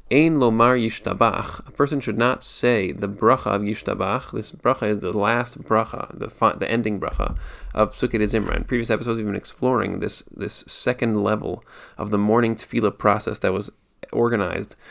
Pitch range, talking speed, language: 100-115 Hz, 175 wpm, English